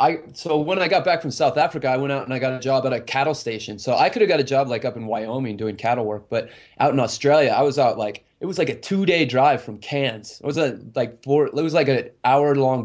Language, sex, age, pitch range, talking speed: English, male, 20-39, 120-145 Hz, 285 wpm